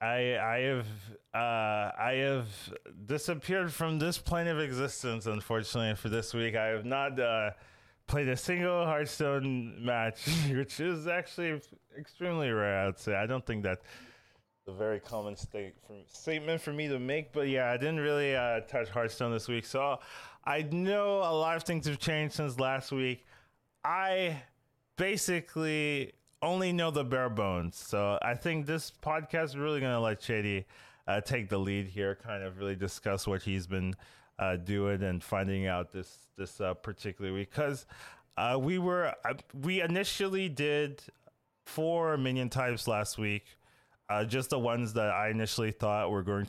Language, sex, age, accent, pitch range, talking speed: English, male, 20-39, American, 105-150 Hz, 170 wpm